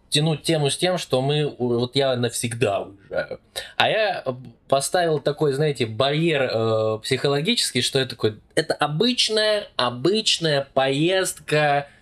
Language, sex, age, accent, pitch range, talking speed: Russian, male, 20-39, native, 125-155 Hz, 120 wpm